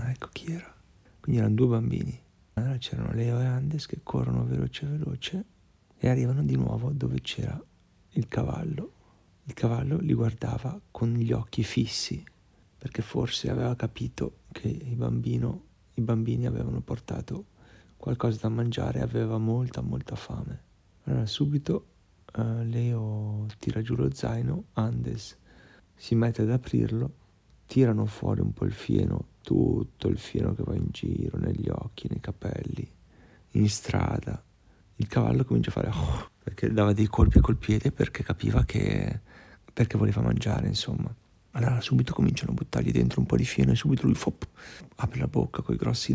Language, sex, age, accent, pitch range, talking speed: Italian, male, 40-59, native, 105-125 Hz, 150 wpm